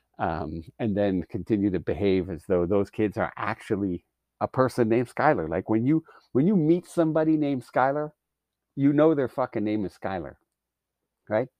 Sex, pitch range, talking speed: male, 100-150 Hz, 170 wpm